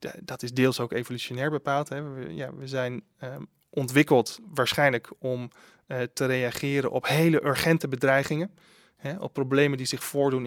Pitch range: 125-145 Hz